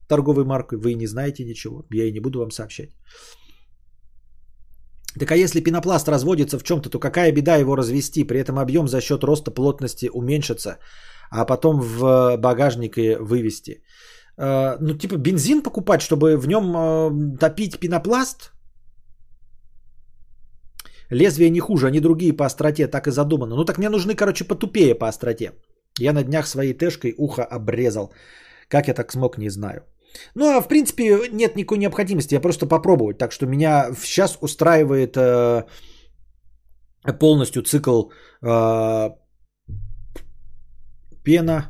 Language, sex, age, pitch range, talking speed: Bulgarian, male, 30-49, 115-160 Hz, 140 wpm